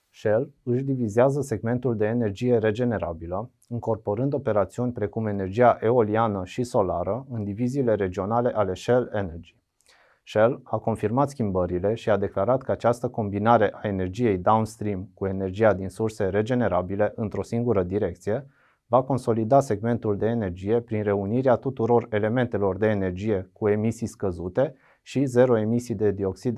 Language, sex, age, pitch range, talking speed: Romanian, male, 30-49, 100-120 Hz, 135 wpm